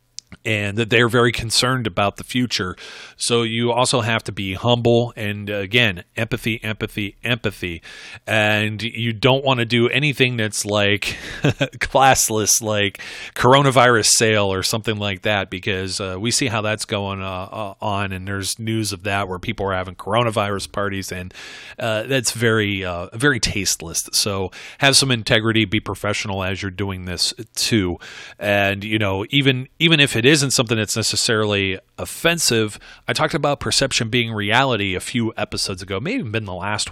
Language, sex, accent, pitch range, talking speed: English, male, American, 100-120 Hz, 165 wpm